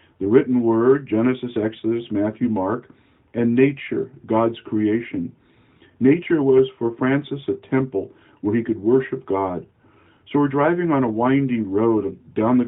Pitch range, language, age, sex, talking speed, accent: 110-130 Hz, English, 50-69, male, 145 wpm, American